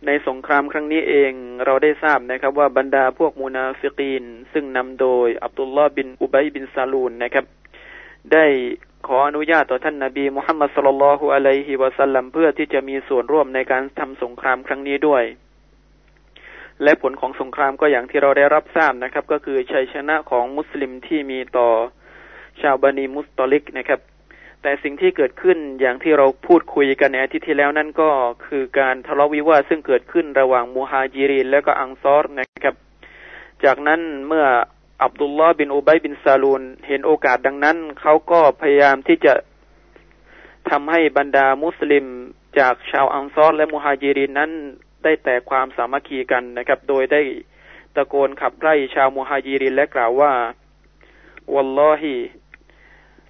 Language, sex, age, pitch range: Thai, male, 20-39, 135-150 Hz